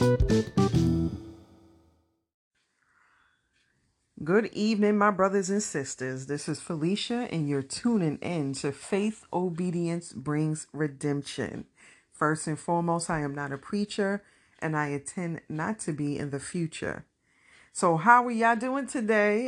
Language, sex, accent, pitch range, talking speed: English, female, American, 145-185 Hz, 125 wpm